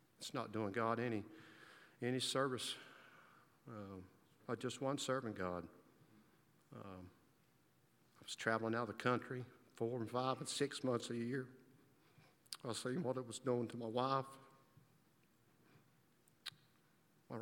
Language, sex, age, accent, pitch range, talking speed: English, male, 60-79, American, 110-135 Hz, 135 wpm